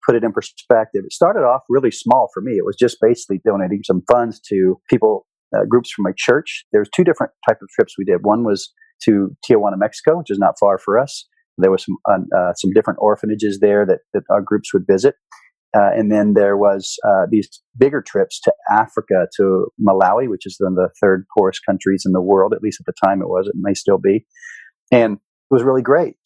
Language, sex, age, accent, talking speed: English, male, 40-59, American, 220 wpm